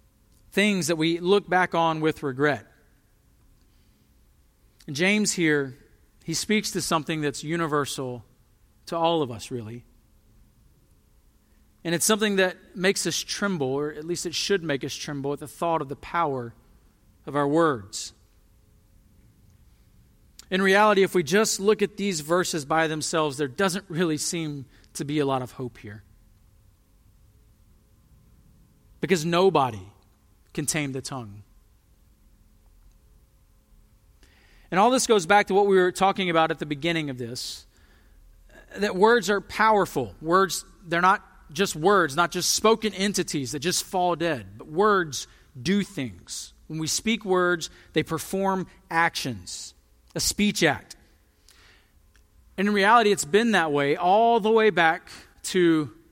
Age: 40-59